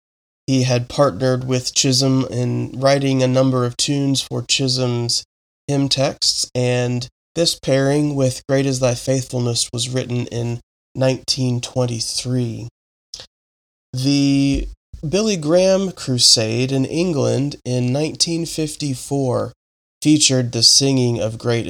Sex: male